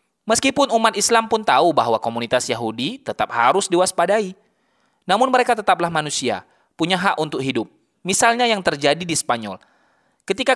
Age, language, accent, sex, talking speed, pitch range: 20-39, Indonesian, native, male, 140 wpm, 140-200 Hz